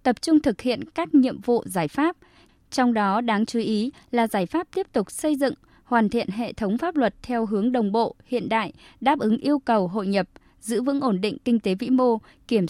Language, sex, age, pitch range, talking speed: Vietnamese, female, 20-39, 200-255 Hz, 225 wpm